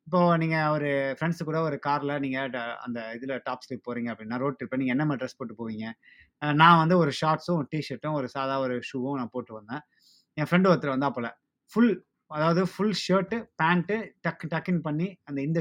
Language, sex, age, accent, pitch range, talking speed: Tamil, male, 20-39, native, 135-175 Hz, 190 wpm